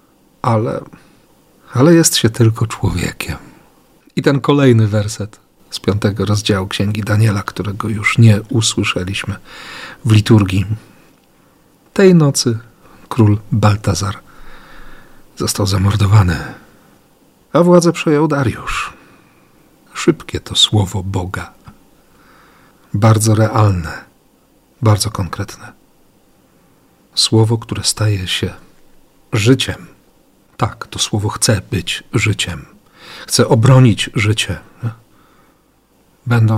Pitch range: 100-120 Hz